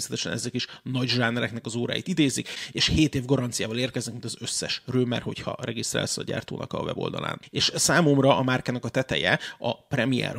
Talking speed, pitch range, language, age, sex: 175 wpm, 120-140 Hz, Hungarian, 30-49, male